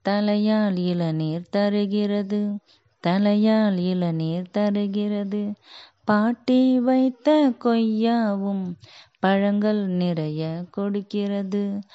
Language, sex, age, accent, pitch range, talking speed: Tamil, female, 20-39, native, 190-220 Hz, 55 wpm